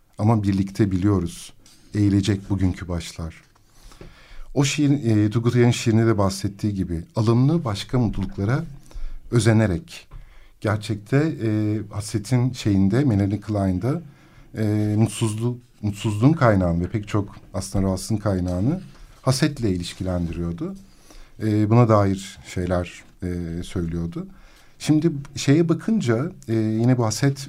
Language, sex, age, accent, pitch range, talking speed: Turkish, male, 50-69, native, 105-135 Hz, 110 wpm